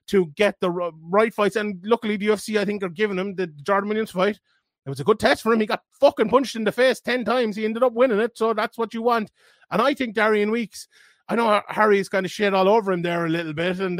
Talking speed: 275 wpm